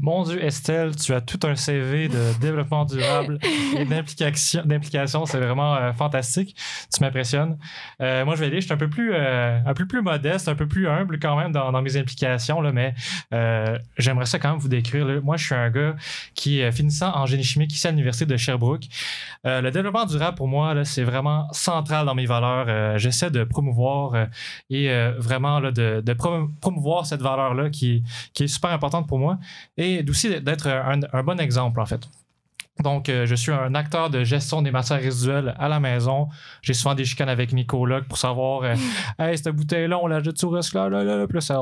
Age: 20-39